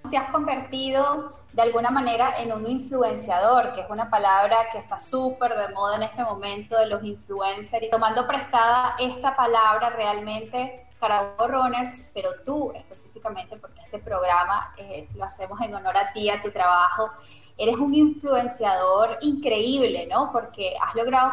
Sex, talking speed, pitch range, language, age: female, 160 wpm, 210-255 Hz, Spanish, 10-29